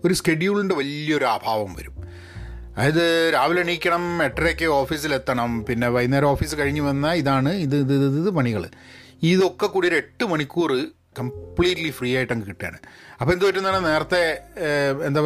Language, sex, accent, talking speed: Malayalam, male, native, 135 wpm